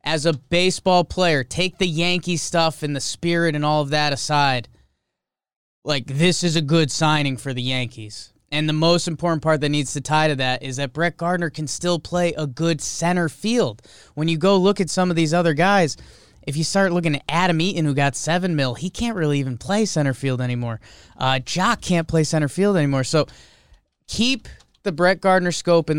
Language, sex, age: English, male, 20-39